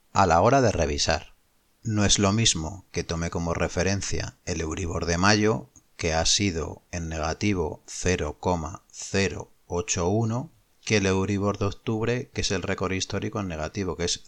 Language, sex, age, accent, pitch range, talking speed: Spanish, male, 30-49, Spanish, 90-120 Hz, 155 wpm